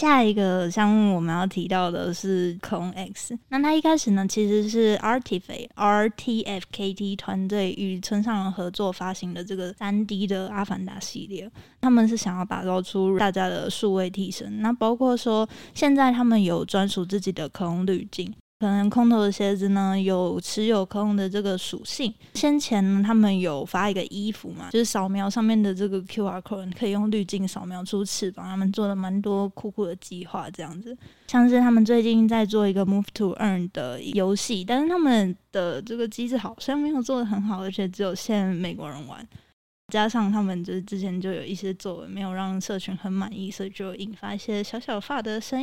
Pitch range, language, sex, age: 185-215 Hz, Chinese, female, 20-39